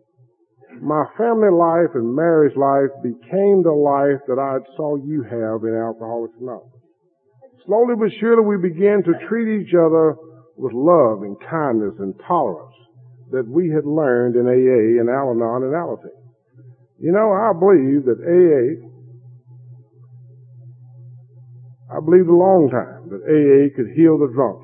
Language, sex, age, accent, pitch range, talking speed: English, male, 50-69, American, 125-165 Hz, 145 wpm